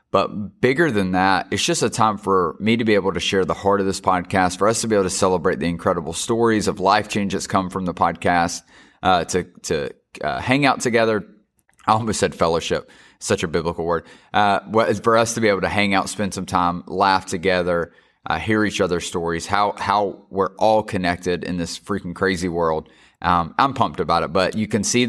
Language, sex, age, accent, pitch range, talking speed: English, male, 30-49, American, 90-110 Hz, 220 wpm